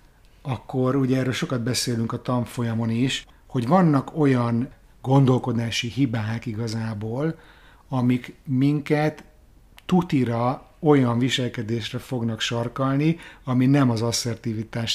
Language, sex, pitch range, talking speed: Hungarian, male, 115-145 Hz, 100 wpm